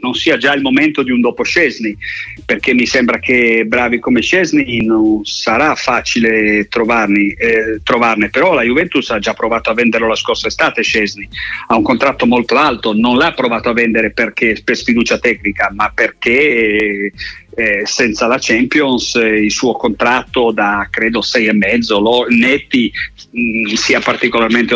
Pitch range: 110-130 Hz